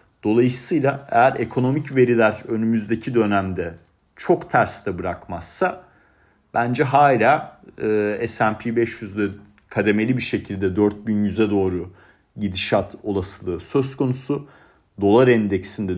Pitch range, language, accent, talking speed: 100-125 Hz, Turkish, native, 100 wpm